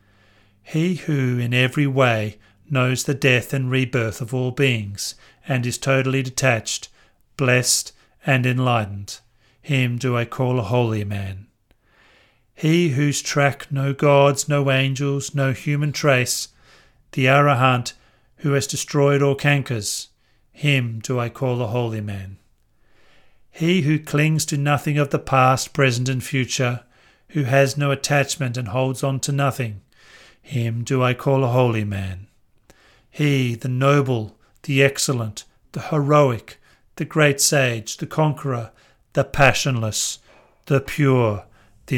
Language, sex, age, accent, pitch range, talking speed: English, male, 40-59, British, 115-140 Hz, 135 wpm